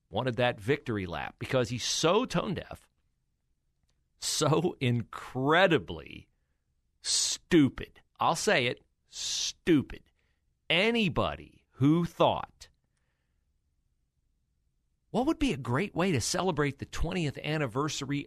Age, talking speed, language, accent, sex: 40-59, 100 wpm, English, American, male